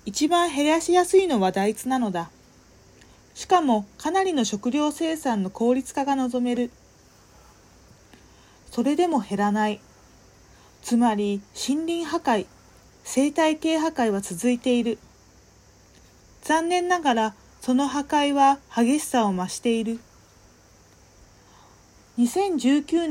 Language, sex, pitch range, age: Japanese, female, 200-285 Hz, 40-59